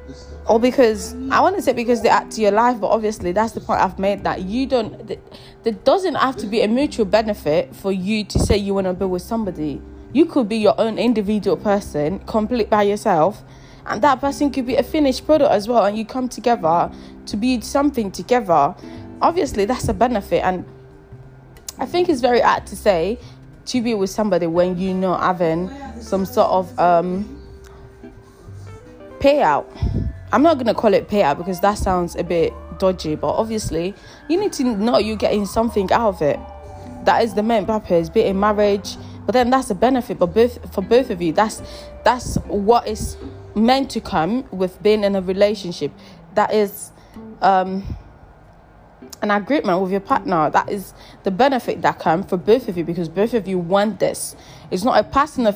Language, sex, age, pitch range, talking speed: English, female, 20-39, 180-235 Hz, 190 wpm